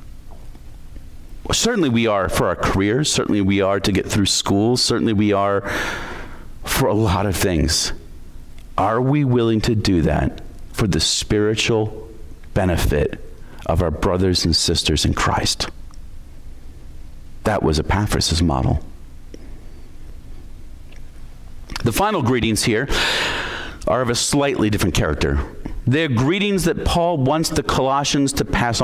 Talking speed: 125 wpm